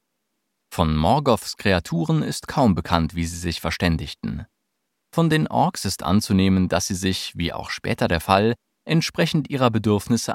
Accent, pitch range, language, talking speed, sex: German, 95-135 Hz, German, 150 wpm, male